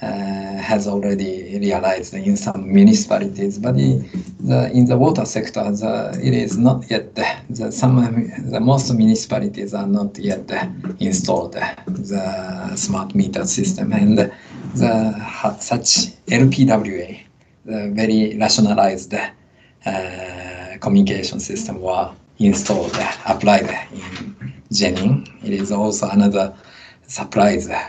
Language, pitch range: Japanese, 100-135 Hz